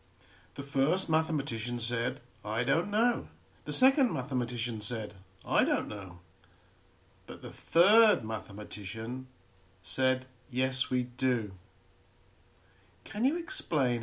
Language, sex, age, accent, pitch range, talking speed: English, male, 50-69, British, 110-150 Hz, 105 wpm